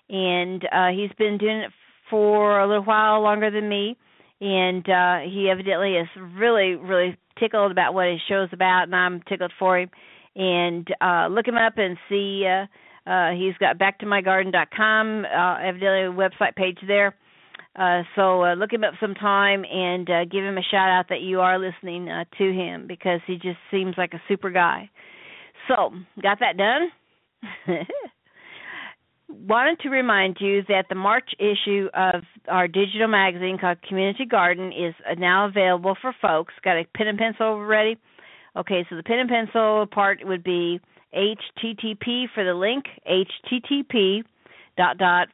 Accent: American